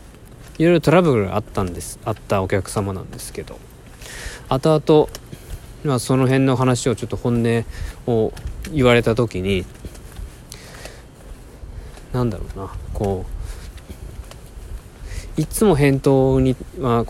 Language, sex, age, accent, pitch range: Japanese, male, 20-39, native, 90-130 Hz